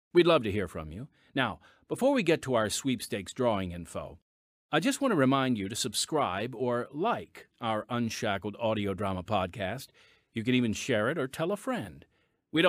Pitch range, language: 105-160 Hz, English